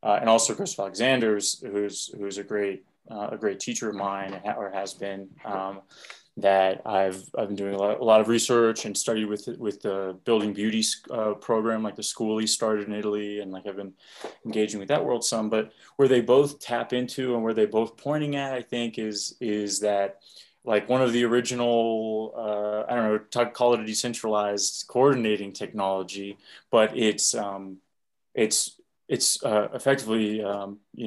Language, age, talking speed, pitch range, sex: English, 20-39, 185 wpm, 100-115 Hz, male